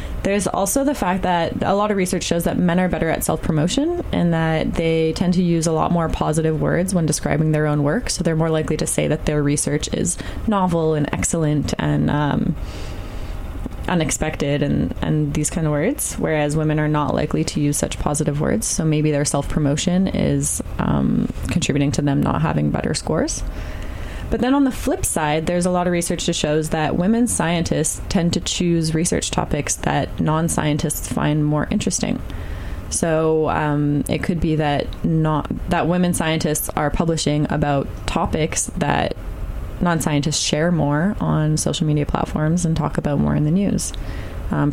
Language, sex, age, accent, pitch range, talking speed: English, female, 20-39, American, 145-175 Hz, 180 wpm